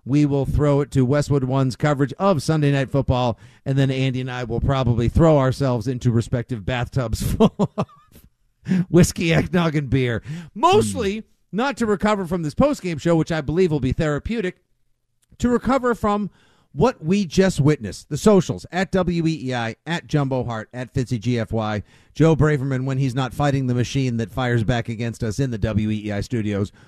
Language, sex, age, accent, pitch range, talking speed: English, male, 50-69, American, 120-155 Hz, 175 wpm